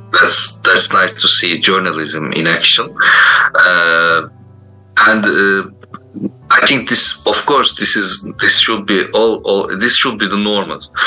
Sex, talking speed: male, 150 wpm